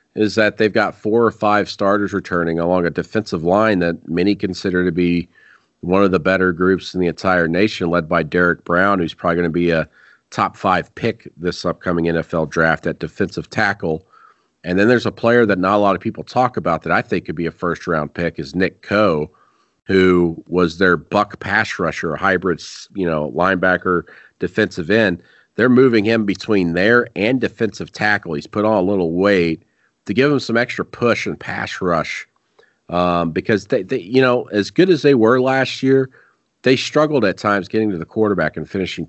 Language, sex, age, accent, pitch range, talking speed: English, male, 40-59, American, 85-110 Hz, 195 wpm